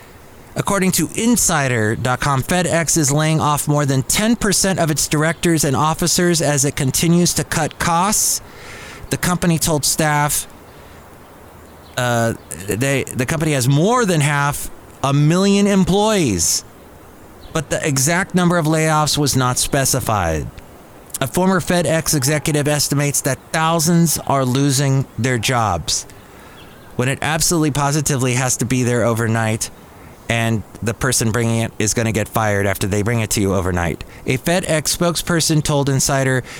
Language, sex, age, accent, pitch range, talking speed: English, male, 30-49, American, 125-160 Hz, 140 wpm